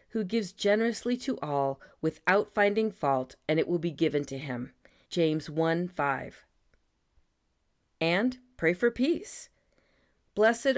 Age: 40-59